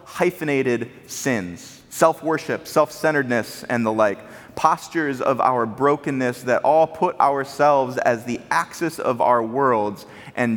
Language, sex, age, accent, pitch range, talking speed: English, male, 30-49, American, 115-150 Hz, 125 wpm